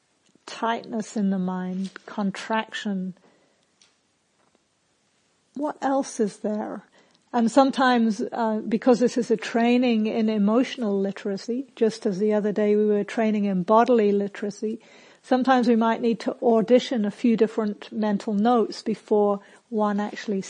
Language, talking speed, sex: English, 130 wpm, female